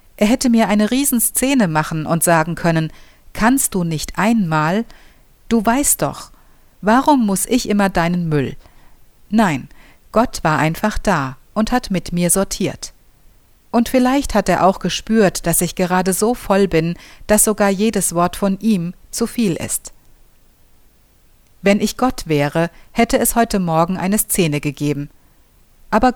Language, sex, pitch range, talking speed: German, female, 160-220 Hz, 150 wpm